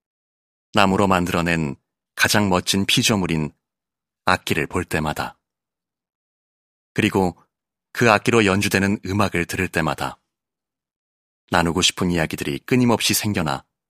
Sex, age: male, 30-49